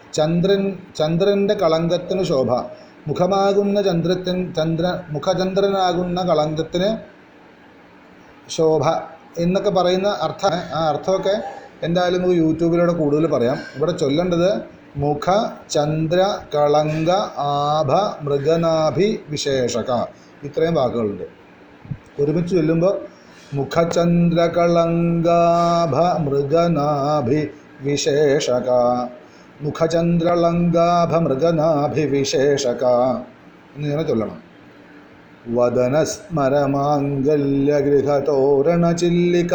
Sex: male